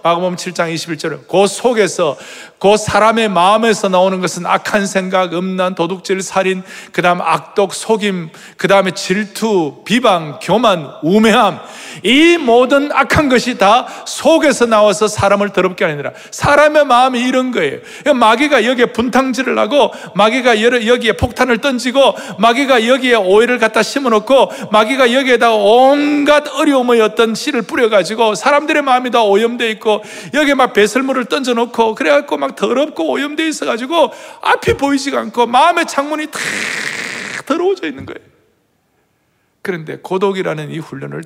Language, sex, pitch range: Korean, male, 185-255 Hz